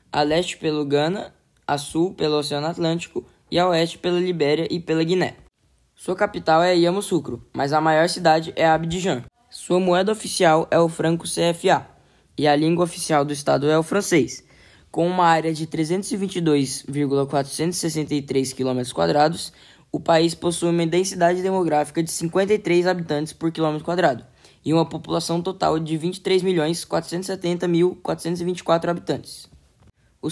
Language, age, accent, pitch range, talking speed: Portuguese, 10-29, Brazilian, 155-180 Hz, 135 wpm